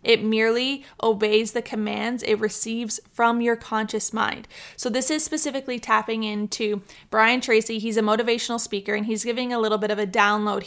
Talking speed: 180 wpm